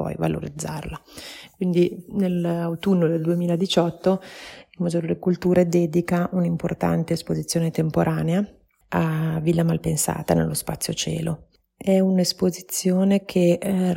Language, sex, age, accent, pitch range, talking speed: Italian, female, 30-49, native, 155-185 Hz, 105 wpm